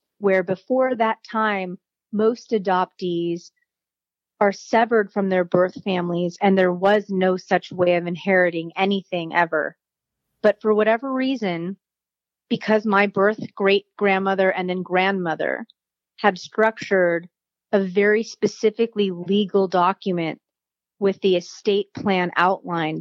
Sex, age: female, 30-49